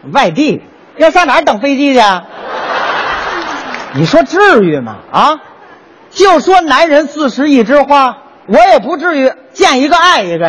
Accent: native